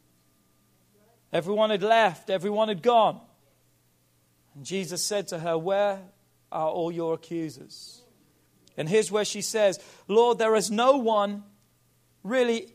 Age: 40-59